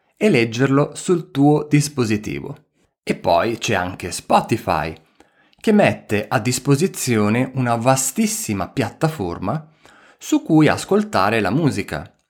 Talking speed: 105 wpm